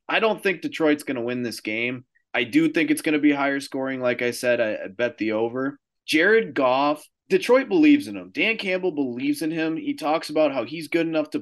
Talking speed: 235 wpm